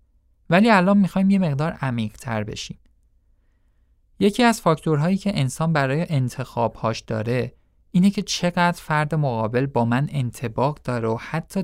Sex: male